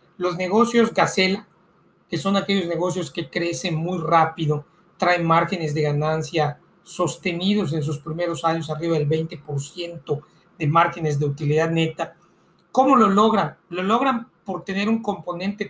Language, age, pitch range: Spanish, 40-59, 165-200 Hz